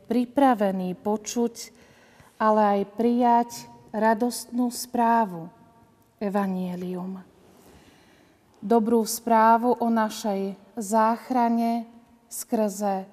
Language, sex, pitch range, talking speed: Slovak, female, 200-230 Hz, 65 wpm